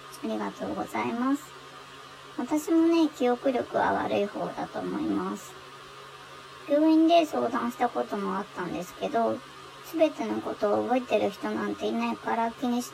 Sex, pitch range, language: male, 220-290 Hz, Japanese